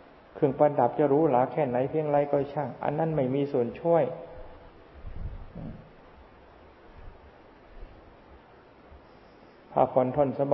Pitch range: 120-145 Hz